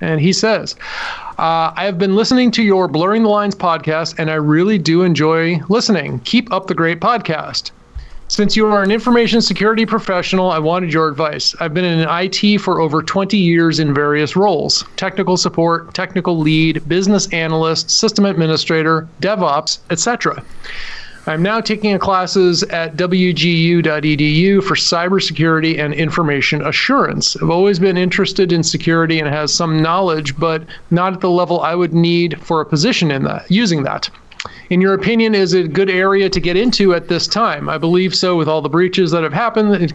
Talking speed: 175 wpm